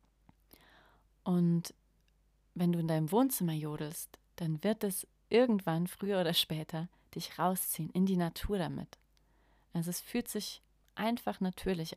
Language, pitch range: German, 160-190 Hz